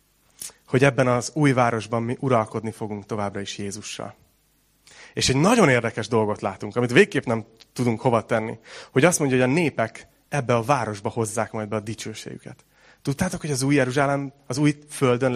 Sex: male